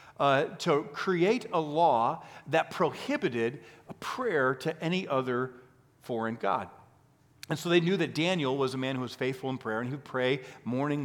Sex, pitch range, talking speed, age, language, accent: male, 120-150 Hz, 170 wpm, 40-59, English, American